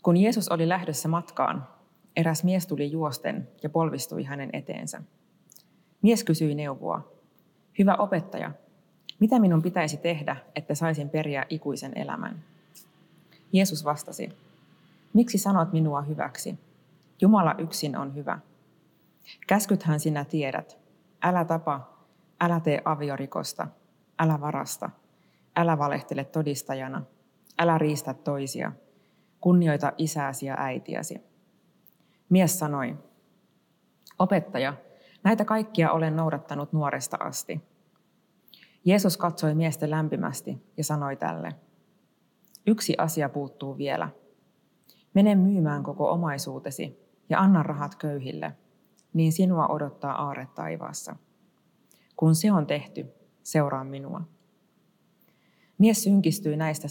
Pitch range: 150-190 Hz